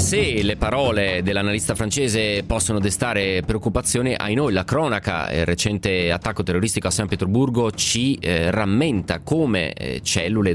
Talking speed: 140 wpm